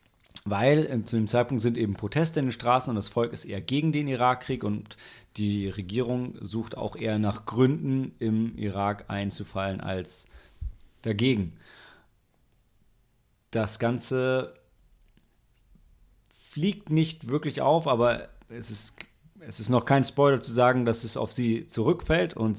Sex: male